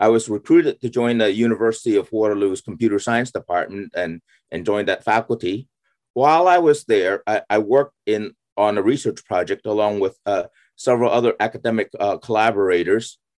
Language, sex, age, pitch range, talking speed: English, male, 30-49, 105-145 Hz, 165 wpm